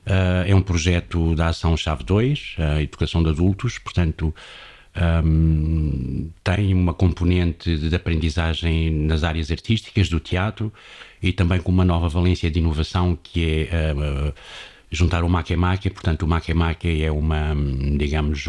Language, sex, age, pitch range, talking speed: Portuguese, male, 60-79, 80-95 Hz, 145 wpm